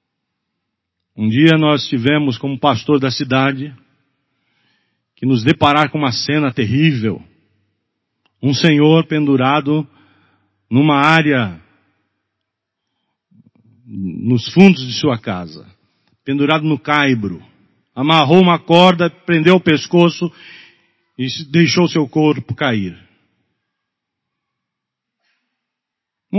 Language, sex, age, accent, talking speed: Portuguese, male, 50-69, Brazilian, 90 wpm